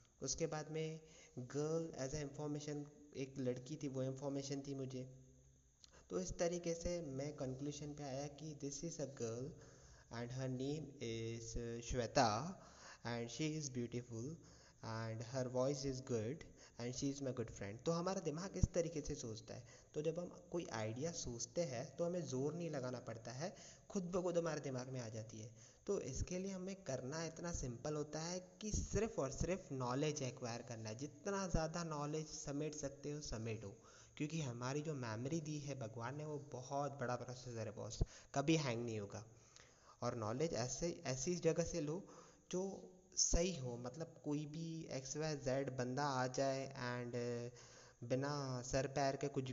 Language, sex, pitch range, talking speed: Hindi, male, 125-155 Hz, 175 wpm